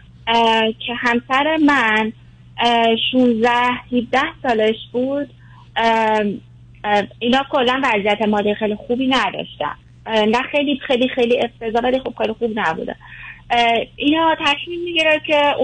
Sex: female